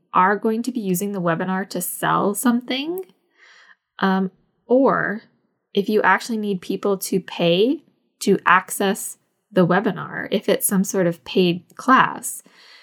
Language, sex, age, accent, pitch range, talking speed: English, female, 10-29, American, 175-215 Hz, 140 wpm